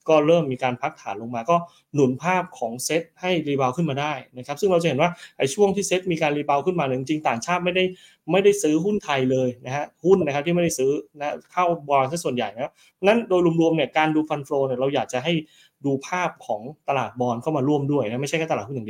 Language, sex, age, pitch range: Thai, male, 20-39, 130-165 Hz